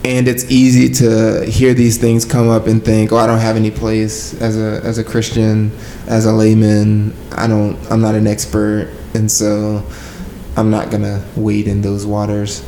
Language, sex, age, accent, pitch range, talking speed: English, male, 20-39, American, 105-115 Hz, 190 wpm